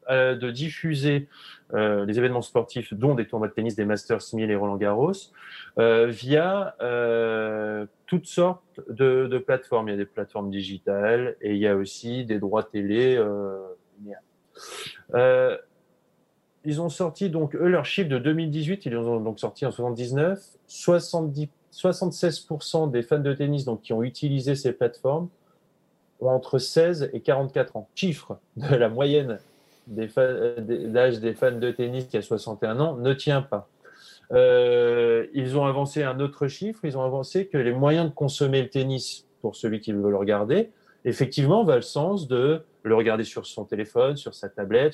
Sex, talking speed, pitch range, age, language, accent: male, 170 wpm, 115-170 Hz, 30-49, French, French